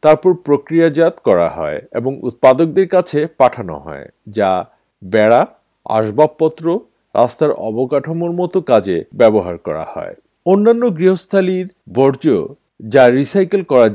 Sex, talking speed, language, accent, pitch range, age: male, 105 wpm, Bengali, native, 120-175 Hz, 50-69